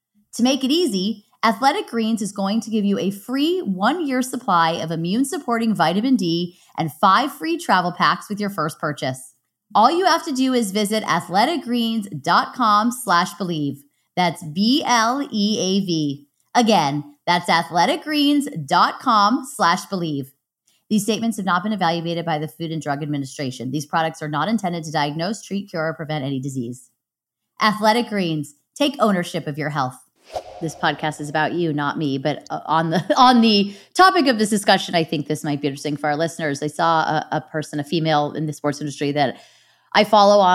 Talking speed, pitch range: 170 wpm, 155-230 Hz